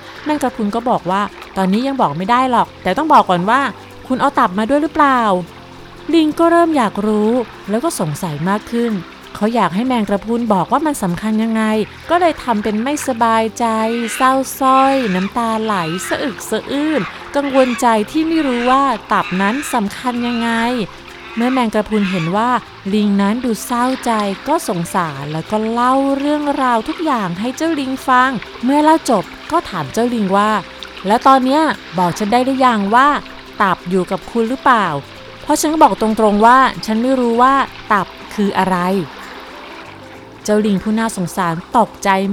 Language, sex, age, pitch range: Thai, female, 30-49, 195-260 Hz